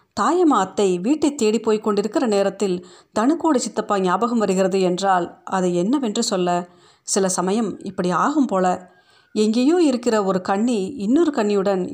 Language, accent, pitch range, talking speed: Tamil, native, 190-240 Hz, 120 wpm